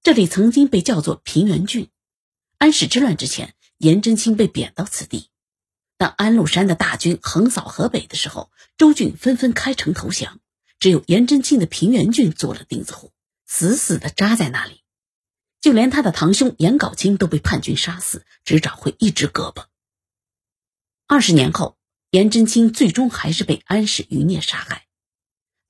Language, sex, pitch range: Japanese, female, 155-240 Hz